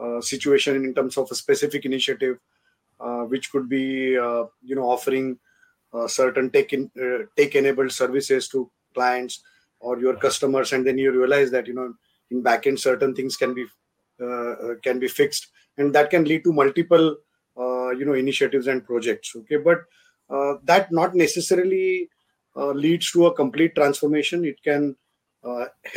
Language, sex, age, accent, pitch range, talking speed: English, male, 30-49, Indian, 130-165 Hz, 165 wpm